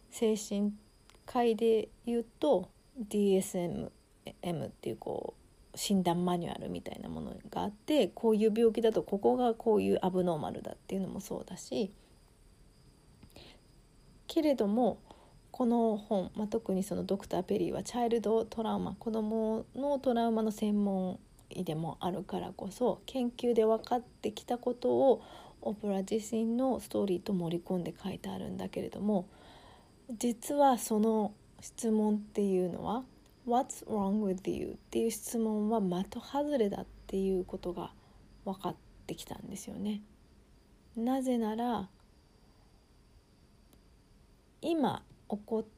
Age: 40-59